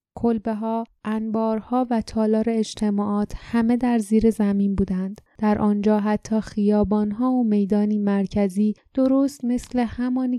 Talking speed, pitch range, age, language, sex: 125 wpm, 205-230 Hz, 10-29, Persian, female